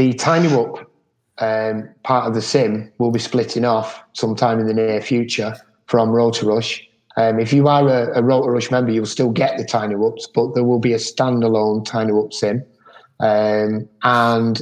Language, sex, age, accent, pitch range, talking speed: English, male, 30-49, British, 110-130 Hz, 170 wpm